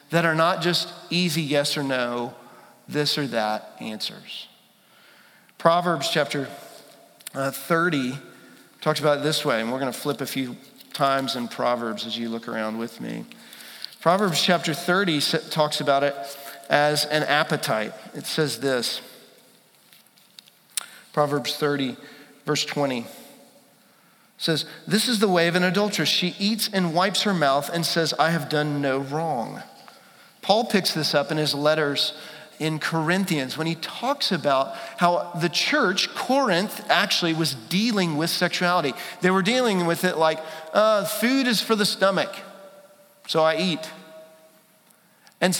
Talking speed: 145 wpm